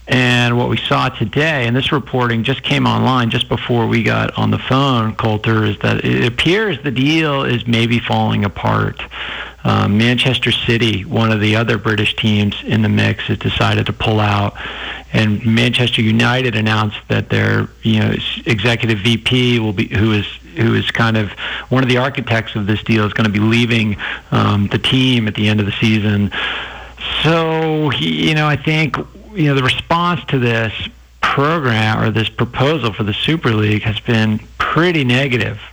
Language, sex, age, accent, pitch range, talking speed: English, male, 50-69, American, 110-125 Hz, 180 wpm